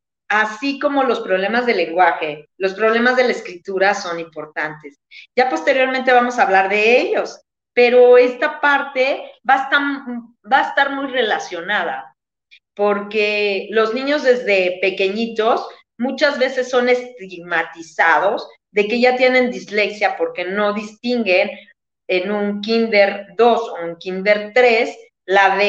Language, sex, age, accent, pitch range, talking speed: Spanish, female, 40-59, Mexican, 180-250 Hz, 135 wpm